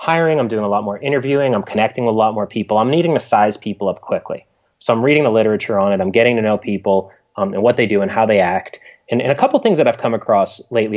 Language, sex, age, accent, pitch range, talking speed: English, male, 30-49, American, 100-145 Hz, 285 wpm